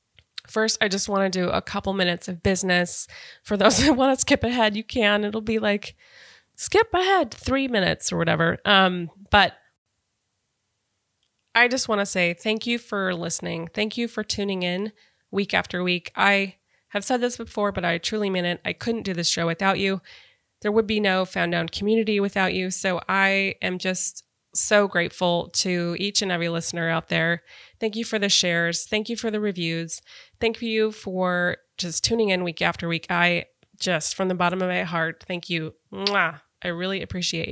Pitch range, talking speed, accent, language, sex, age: 175-210 Hz, 190 wpm, American, English, female, 20-39